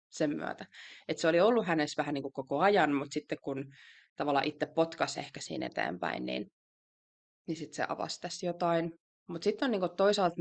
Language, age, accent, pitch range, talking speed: Finnish, 20-39, native, 150-175 Hz, 180 wpm